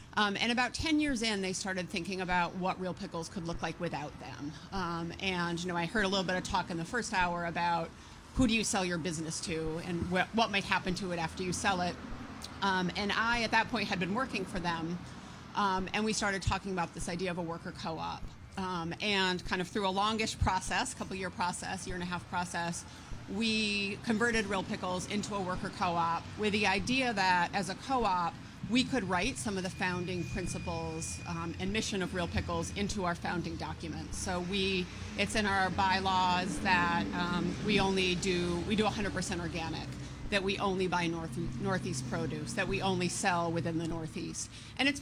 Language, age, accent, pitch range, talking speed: English, 30-49, American, 175-200 Hz, 205 wpm